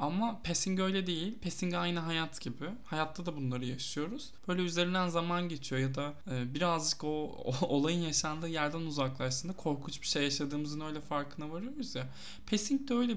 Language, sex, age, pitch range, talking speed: Turkish, male, 20-39, 140-185 Hz, 165 wpm